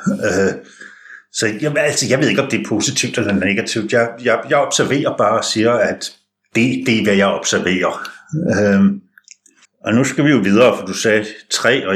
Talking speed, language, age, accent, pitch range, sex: 195 wpm, Danish, 60-79, native, 100-125 Hz, male